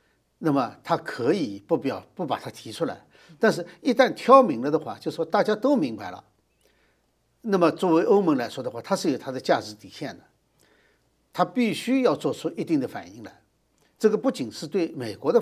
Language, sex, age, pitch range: Chinese, male, 50-69, 155-250 Hz